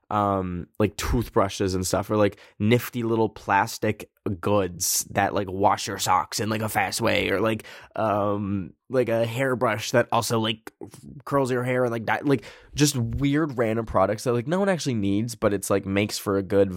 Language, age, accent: English, 10-29, American